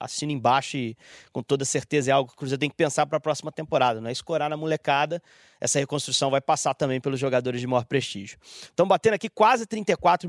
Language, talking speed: Portuguese, 220 wpm